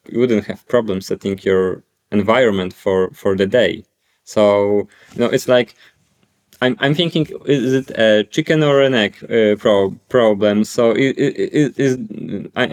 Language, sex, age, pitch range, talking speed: English, male, 20-39, 105-125 Hz, 170 wpm